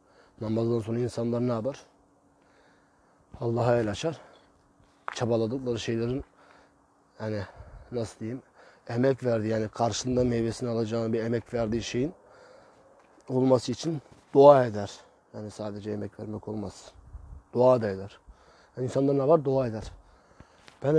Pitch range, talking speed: 105-130 Hz, 120 wpm